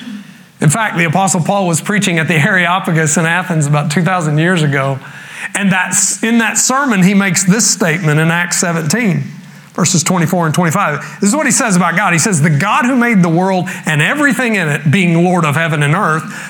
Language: English